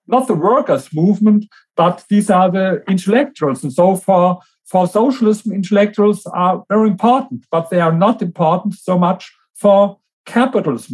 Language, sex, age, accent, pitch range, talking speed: English, male, 50-69, German, 170-210 Hz, 150 wpm